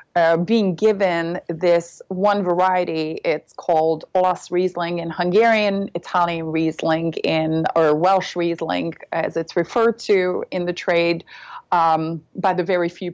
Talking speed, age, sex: 135 wpm, 30-49, female